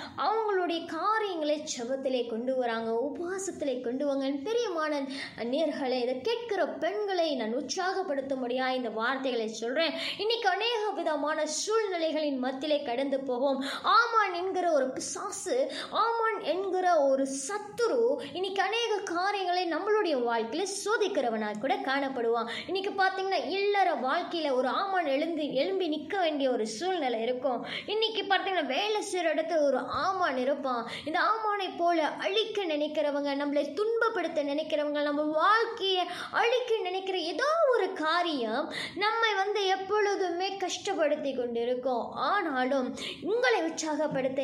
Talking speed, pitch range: 90 wpm, 270-385 Hz